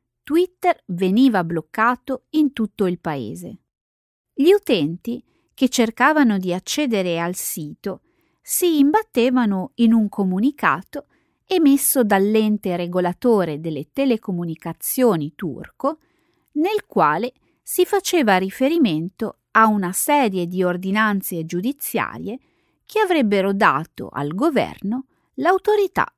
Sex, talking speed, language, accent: female, 100 wpm, Italian, native